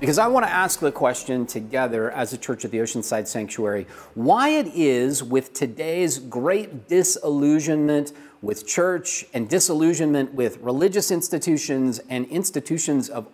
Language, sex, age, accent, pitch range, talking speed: English, male, 40-59, American, 115-160 Hz, 145 wpm